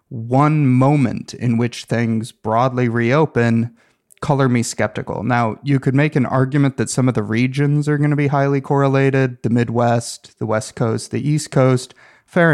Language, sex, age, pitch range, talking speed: English, male, 30-49, 115-135 Hz, 170 wpm